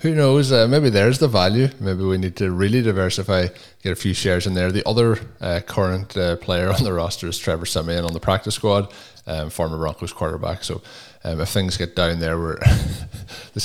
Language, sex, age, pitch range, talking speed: English, male, 20-39, 85-100 Hz, 210 wpm